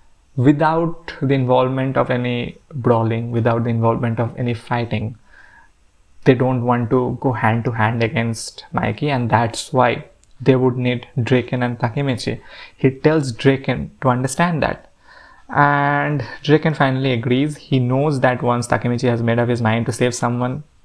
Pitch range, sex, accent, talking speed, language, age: 120-145 Hz, male, Indian, 155 wpm, English, 20-39